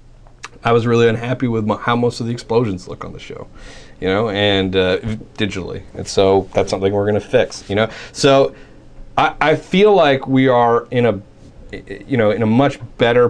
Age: 30-49